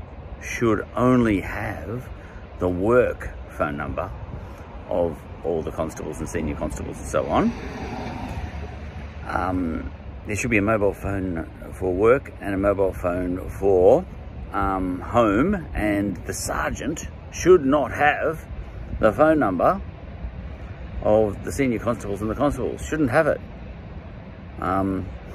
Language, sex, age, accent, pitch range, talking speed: English, male, 50-69, Australian, 85-110 Hz, 125 wpm